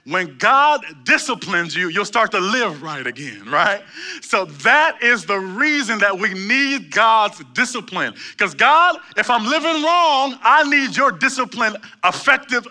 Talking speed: 150 wpm